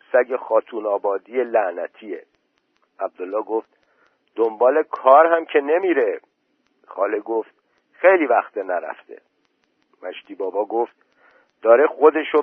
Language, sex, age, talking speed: Persian, male, 50-69, 100 wpm